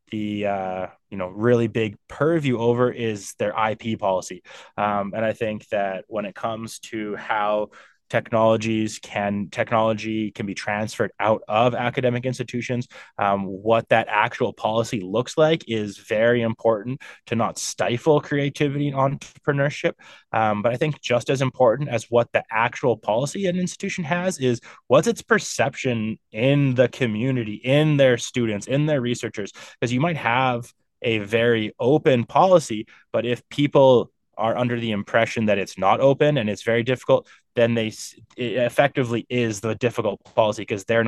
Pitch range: 110-130 Hz